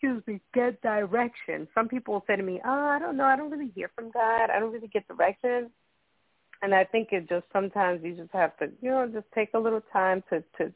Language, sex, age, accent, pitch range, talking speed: English, female, 40-59, American, 170-235 Hz, 240 wpm